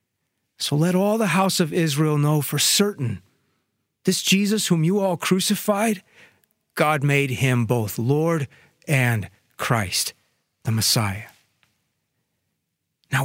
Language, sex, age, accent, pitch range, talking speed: English, male, 40-59, American, 115-170 Hz, 120 wpm